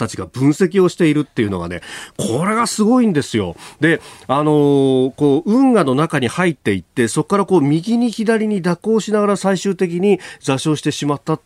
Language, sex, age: Japanese, male, 40-59